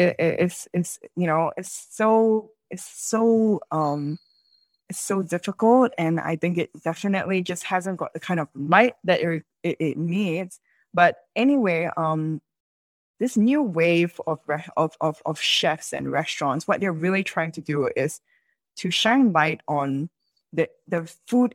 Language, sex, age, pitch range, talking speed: English, female, 20-39, 165-220 Hz, 165 wpm